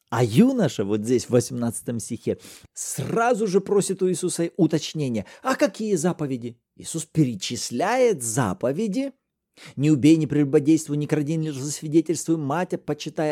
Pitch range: 130-200 Hz